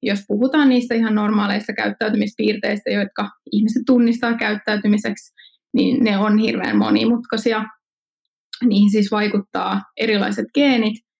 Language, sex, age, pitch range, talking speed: Finnish, female, 20-39, 200-235 Hz, 105 wpm